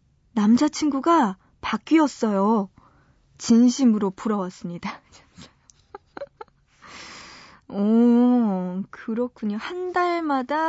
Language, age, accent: Korean, 20-39, native